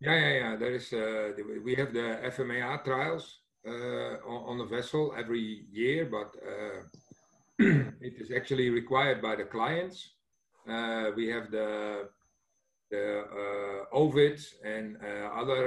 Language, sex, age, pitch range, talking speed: English, male, 50-69, 110-130 Hz, 140 wpm